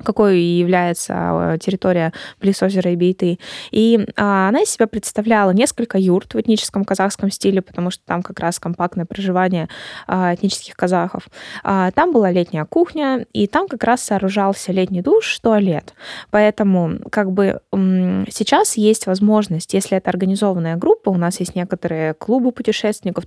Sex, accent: female, native